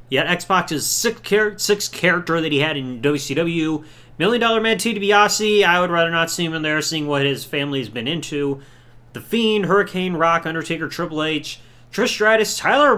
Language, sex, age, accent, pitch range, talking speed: English, male, 30-49, American, 125-190 Hz, 180 wpm